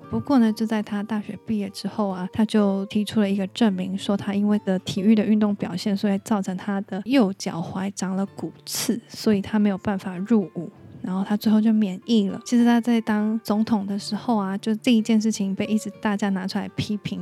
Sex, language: female, Chinese